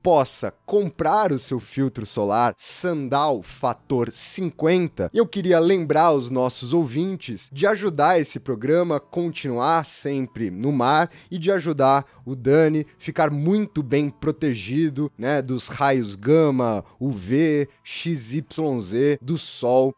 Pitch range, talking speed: 130-165 Hz, 125 wpm